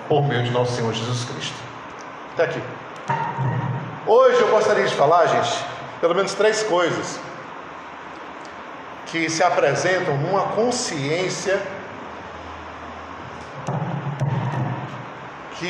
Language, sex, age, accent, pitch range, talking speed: Portuguese, male, 50-69, Brazilian, 140-205 Hz, 95 wpm